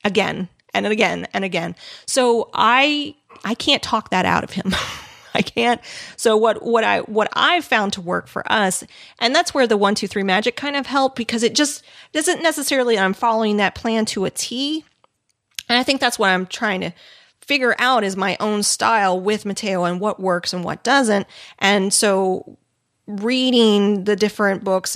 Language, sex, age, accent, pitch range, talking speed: English, female, 30-49, American, 190-250 Hz, 190 wpm